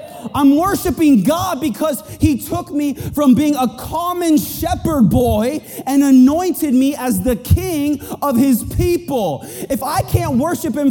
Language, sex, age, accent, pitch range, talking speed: English, male, 30-49, American, 225-295 Hz, 150 wpm